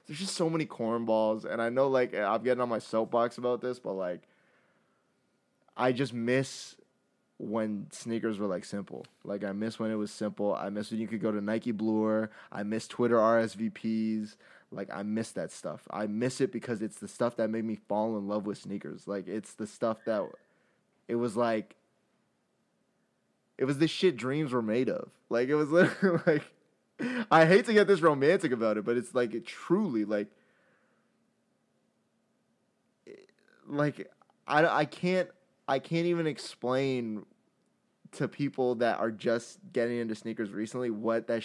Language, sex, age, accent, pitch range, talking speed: English, male, 20-39, American, 110-130 Hz, 175 wpm